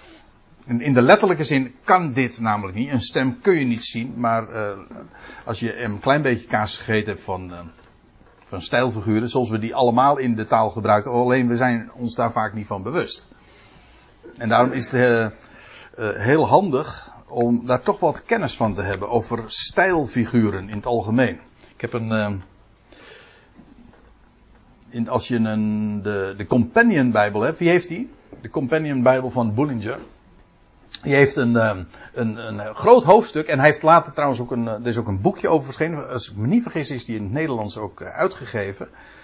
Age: 60-79